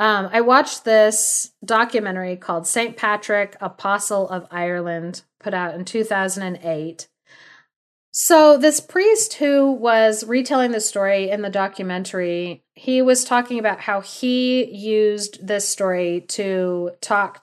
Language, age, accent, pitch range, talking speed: English, 30-49, American, 180-220 Hz, 125 wpm